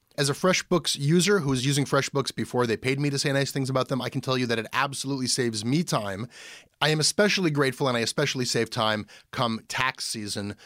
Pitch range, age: 115-145 Hz, 30-49